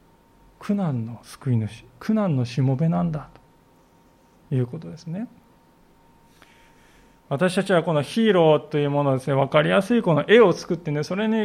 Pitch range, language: 145-195 Hz, Japanese